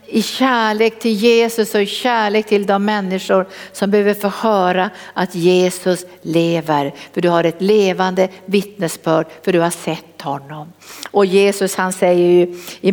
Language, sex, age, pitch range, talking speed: Swedish, female, 60-79, 180-225 Hz, 160 wpm